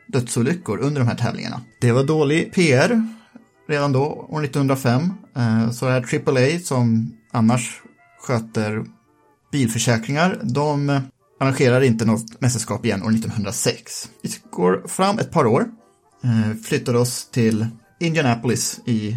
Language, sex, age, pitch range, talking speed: Swedish, male, 30-49, 115-150 Hz, 120 wpm